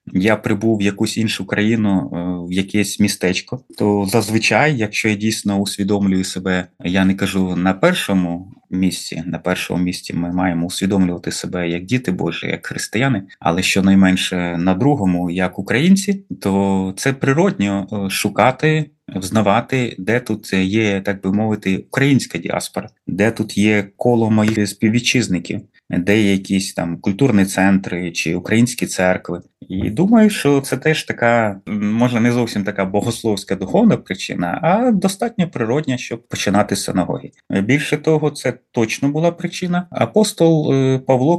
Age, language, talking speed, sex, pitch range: 30-49, Ukrainian, 135 wpm, male, 95-125 Hz